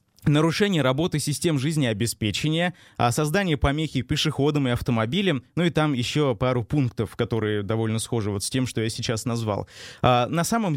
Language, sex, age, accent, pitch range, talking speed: Russian, male, 20-39, native, 120-150 Hz, 145 wpm